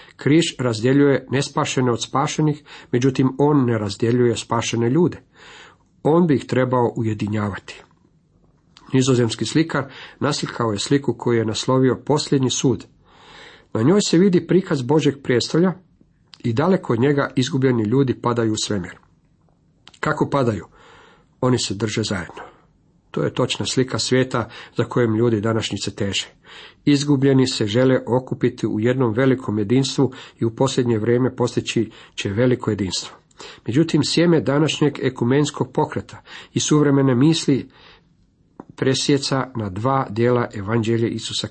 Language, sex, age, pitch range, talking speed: Croatian, male, 50-69, 115-145 Hz, 125 wpm